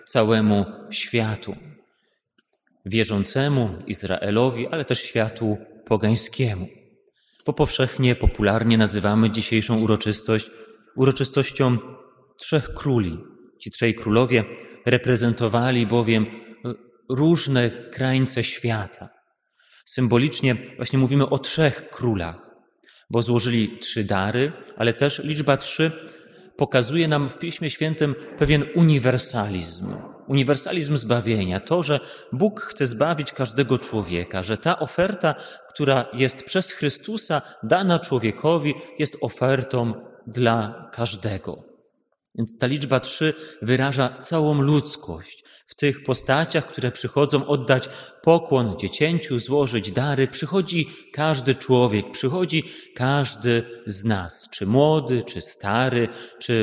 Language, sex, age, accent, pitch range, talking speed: Polish, male, 30-49, native, 115-145 Hz, 105 wpm